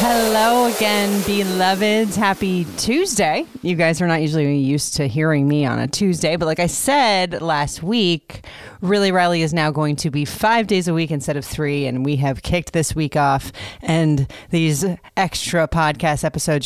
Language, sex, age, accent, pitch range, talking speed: English, female, 30-49, American, 145-185 Hz, 175 wpm